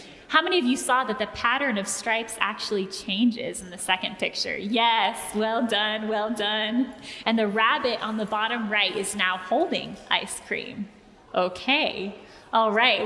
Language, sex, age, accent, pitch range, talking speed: English, female, 10-29, American, 210-260 Hz, 165 wpm